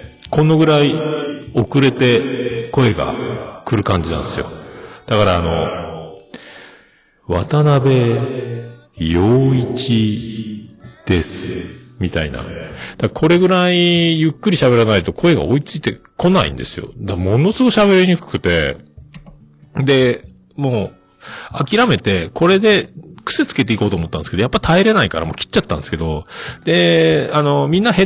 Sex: male